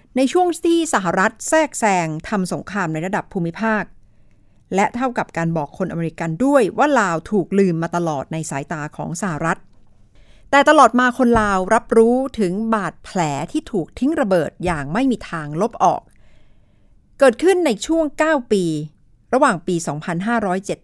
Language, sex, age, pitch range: Thai, female, 60-79, 165-235 Hz